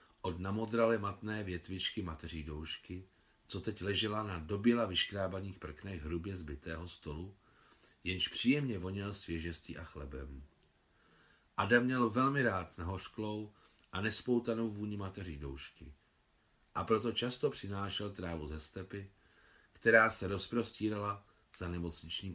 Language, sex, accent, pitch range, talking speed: Czech, male, native, 85-115 Hz, 120 wpm